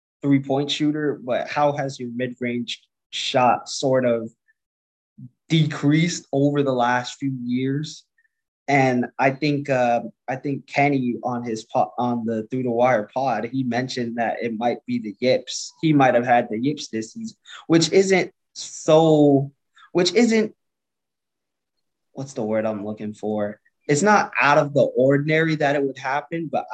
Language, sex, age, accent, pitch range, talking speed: English, male, 20-39, American, 120-140 Hz, 155 wpm